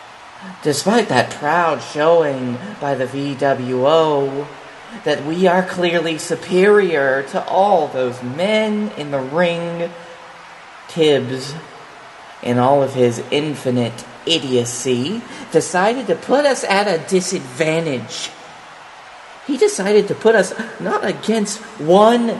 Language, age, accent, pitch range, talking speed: English, 40-59, American, 155-215 Hz, 110 wpm